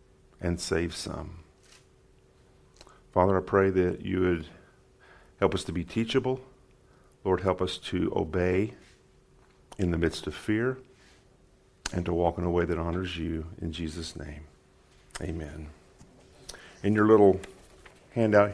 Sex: male